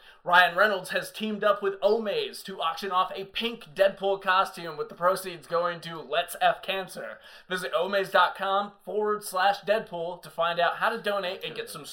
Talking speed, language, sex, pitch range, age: 180 wpm, English, male, 160-205 Hz, 20-39